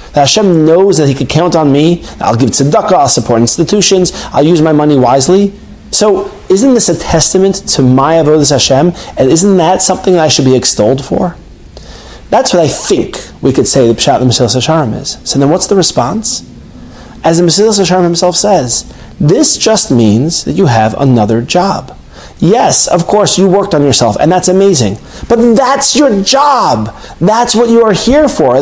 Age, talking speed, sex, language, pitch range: 30-49, 190 wpm, male, English, 150-215 Hz